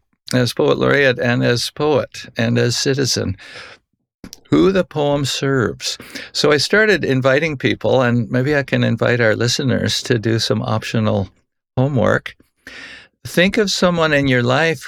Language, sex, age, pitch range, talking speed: English, male, 60-79, 110-135 Hz, 145 wpm